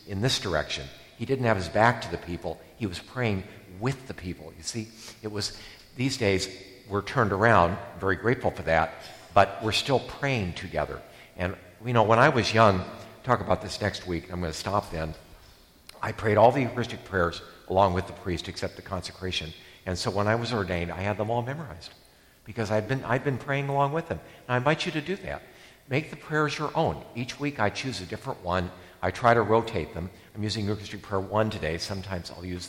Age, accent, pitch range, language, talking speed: 60-79, American, 90-120 Hz, English, 225 wpm